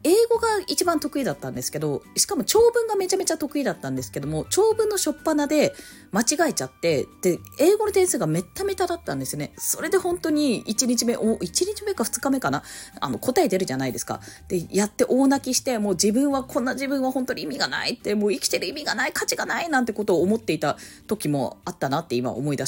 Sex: female